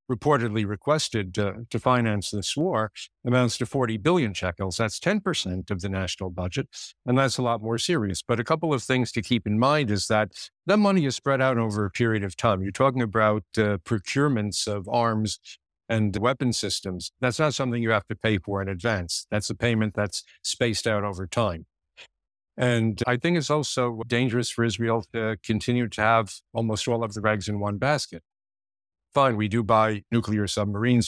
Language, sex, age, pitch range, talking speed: English, male, 60-79, 105-120 Hz, 190 wpm